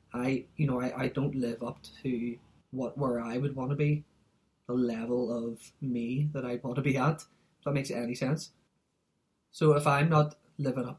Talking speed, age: 200 wpm, 20-39